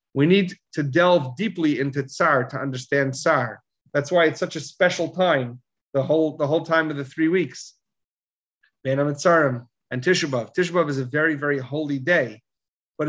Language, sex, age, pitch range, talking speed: English, male, 40-59, 145-195 Hz, 180 wpm